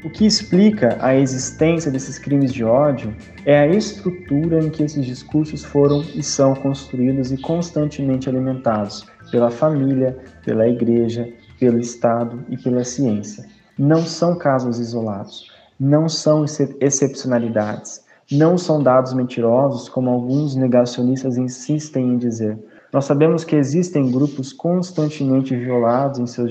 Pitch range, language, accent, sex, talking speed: 120-145 Hz, Portuguese, Brazilian, male, 130 wpm